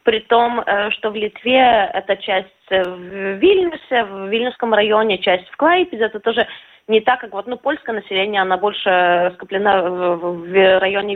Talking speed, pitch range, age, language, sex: 165 wpm, 195-260 Hz, 20-39, Russian, female